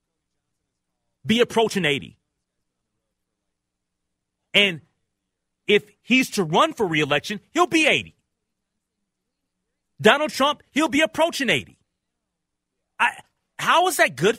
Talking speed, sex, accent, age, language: 100 wpm, male, American, 40-59, English